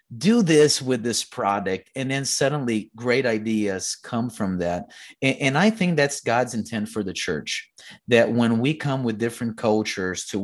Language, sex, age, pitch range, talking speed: English, male, 30-49, 100-125 Hz, 180 wpm